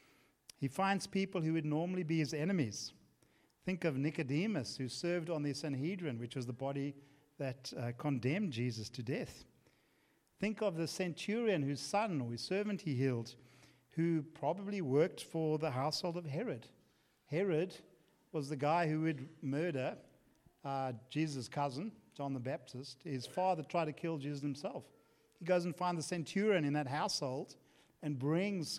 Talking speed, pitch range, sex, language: 160 wpm, 135-175 Hz, male, English